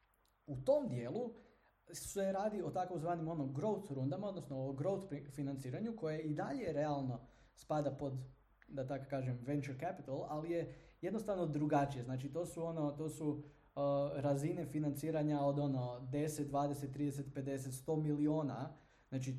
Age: 20-39